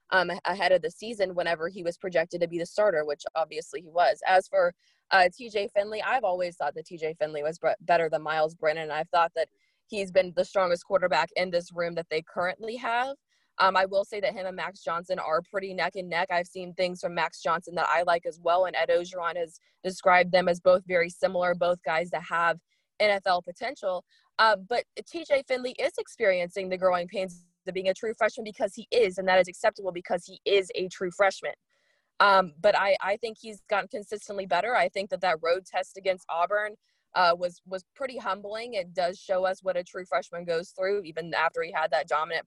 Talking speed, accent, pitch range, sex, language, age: 220 wpm, American, 170-205 Hz, female, English, 20-39